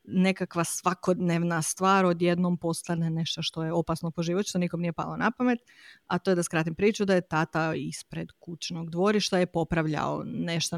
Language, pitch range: Croatian, 165-195 Hz